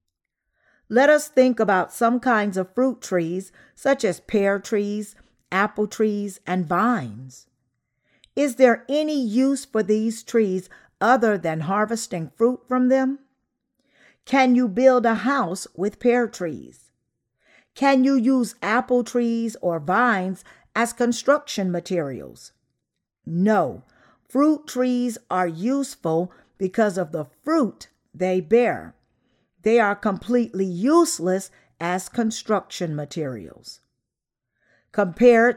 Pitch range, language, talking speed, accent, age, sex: 185-250 Hz, English, 115 wpm, American, 50-69, female